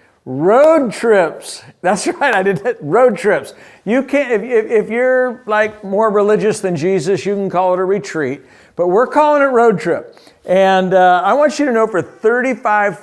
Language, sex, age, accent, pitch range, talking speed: English, male, 50-69, American, 165-225 Hz, 180 wpm